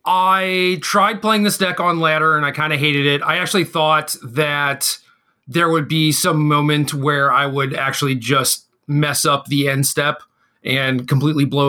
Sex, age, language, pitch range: male, 30-49, English, 145-175 Hz